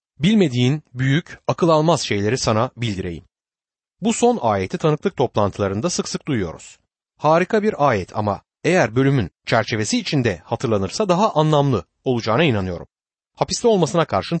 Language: Turkish